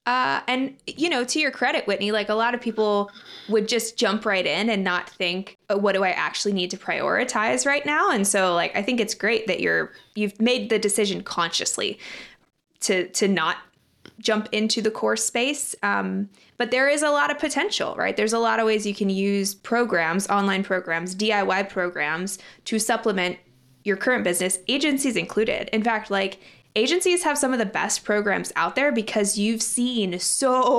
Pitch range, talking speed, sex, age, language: 195-230 Hz, 190 wpm, female, 20-39, English